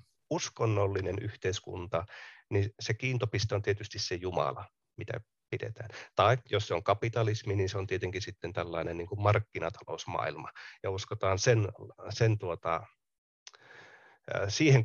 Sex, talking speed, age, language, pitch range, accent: male, 105 wpm, 30-49, Finnish, 100-120 Hz, native